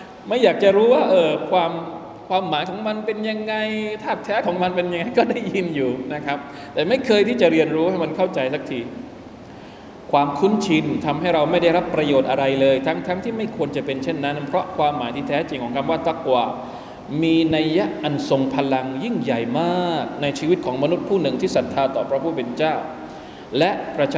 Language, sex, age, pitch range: Thai, male, 20-39, 145-185 Hz